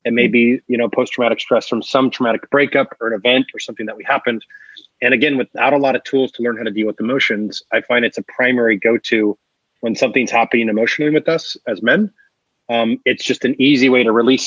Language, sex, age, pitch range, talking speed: English, male, 30-49, 115-135 Hz, 230 wpm